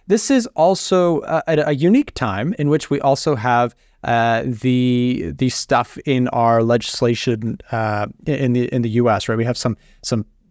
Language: English